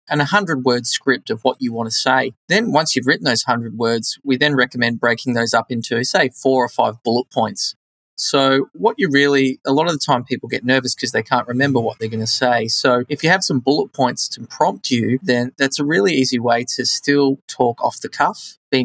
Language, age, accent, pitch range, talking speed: English, 20-39, Australian, 120-140 Hz, 235 wpm